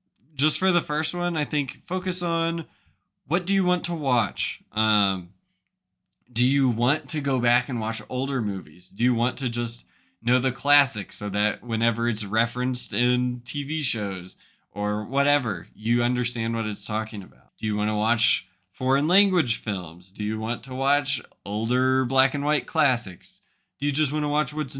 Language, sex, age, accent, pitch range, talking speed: English, male, 20-39, American, 110-140 Hz, 180 wpm